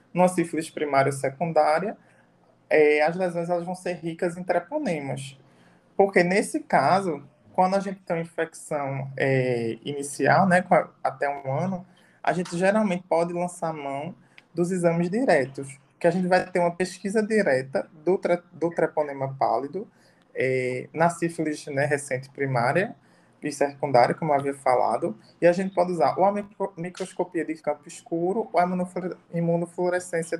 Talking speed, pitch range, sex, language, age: 160 wpm, 155-190 Hz, male, Portuguese, 20-39